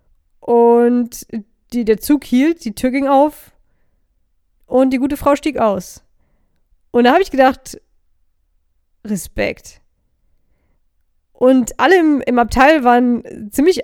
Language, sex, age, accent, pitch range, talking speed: German, female, 20-39, German, 205-250 Hz, 120 wpm